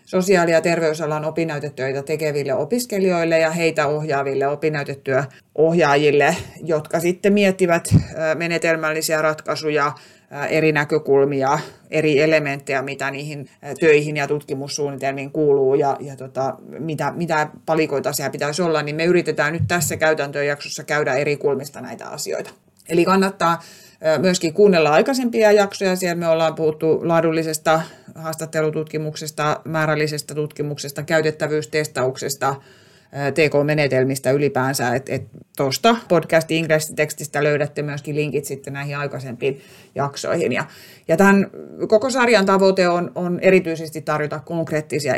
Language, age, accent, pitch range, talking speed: Finnish, 30-49, native, 145-165 Hz, 110 wpm